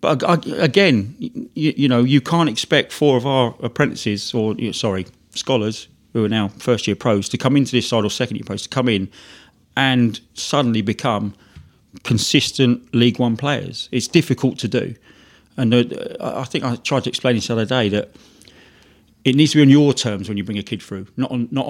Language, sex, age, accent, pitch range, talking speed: English, male, 40-59, British, 110-130 Hz, 195 wpm